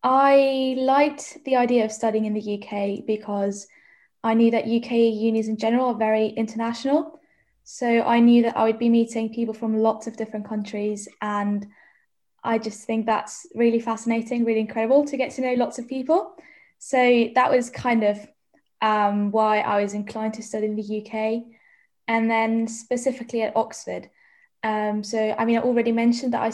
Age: 10-29